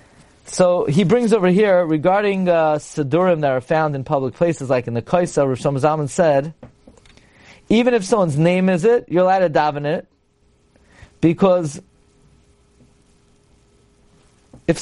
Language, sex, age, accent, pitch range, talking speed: English, male, 30-49, American, 140-185 Hz, 140 wpm